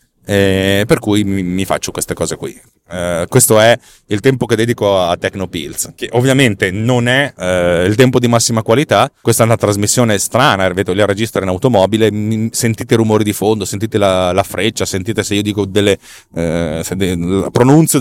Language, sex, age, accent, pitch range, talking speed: Italian, male, 30-49, native, 100-135 Hz, 180 wpm